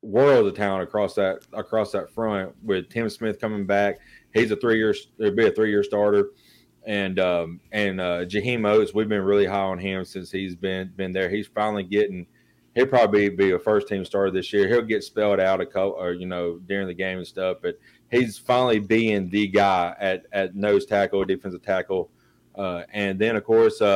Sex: male